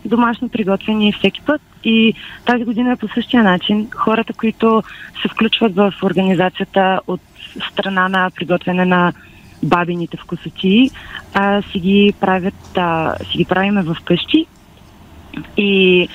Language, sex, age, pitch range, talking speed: Bulgarian, female, 20-39, 180-220 Hz, 115 wpm